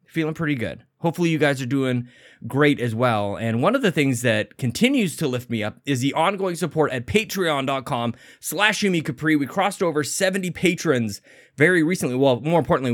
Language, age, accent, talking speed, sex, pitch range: English, 20-39, American, 185 wpm, male, 120-170 Hz